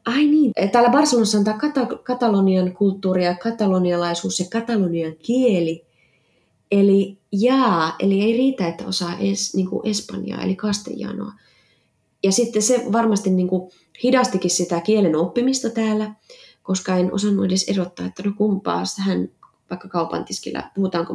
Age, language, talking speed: 20-39, Finnish, 135 wpm